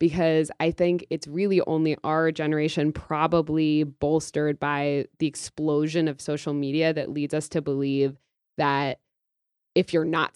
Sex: female